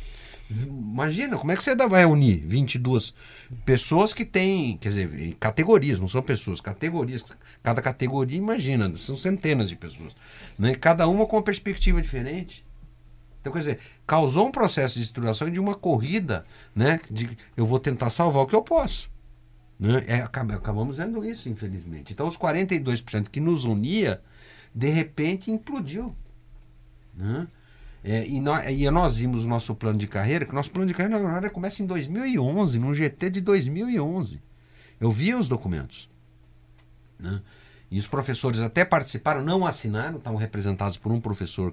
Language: Portuguese